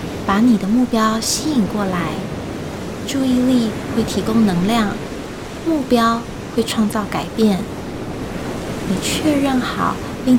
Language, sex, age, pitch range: Chinese, female, 20-39, 205-245 Hz